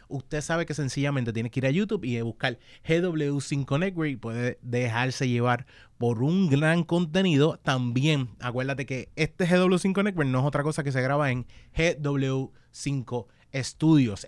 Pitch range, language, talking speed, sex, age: 125-150 Hz, Spanish, 160 wpm, male, 30-49